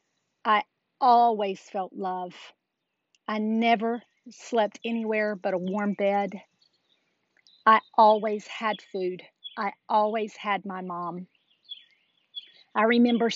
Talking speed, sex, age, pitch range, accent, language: 105 wpm, female, 40-59, 195-230 Hz, American, English